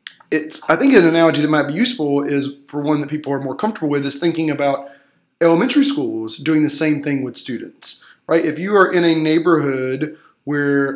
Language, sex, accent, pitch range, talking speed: English, male, American, 140-165 Hz, 195 wpm